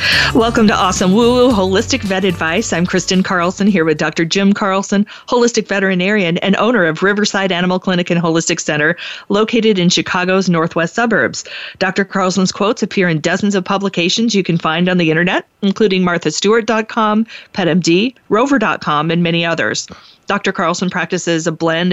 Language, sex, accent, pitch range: English, female, American, 175-225 Hz